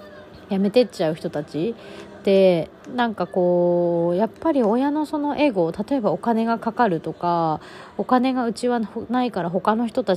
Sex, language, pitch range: female, Japanese, 175-250 Hz